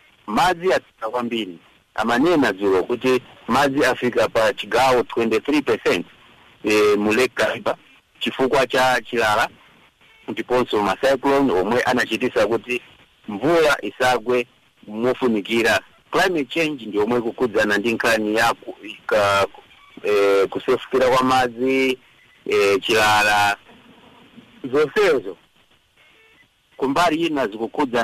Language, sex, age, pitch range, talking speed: English, male, 50-69, 105-130 Hz, 90 wpm